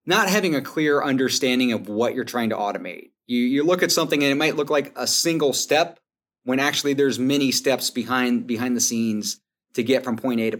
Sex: male